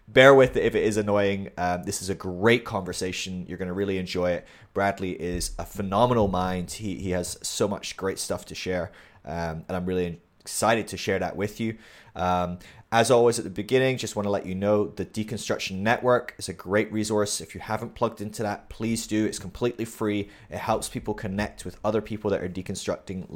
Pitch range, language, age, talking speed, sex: 90-110 Hz, English, 20-39, 210 wpm, male